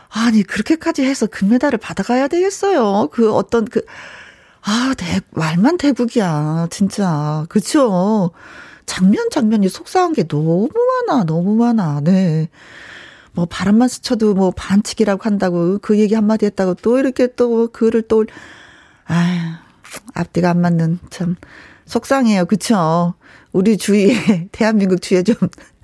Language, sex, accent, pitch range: Korean, female, native, 175-240 Hz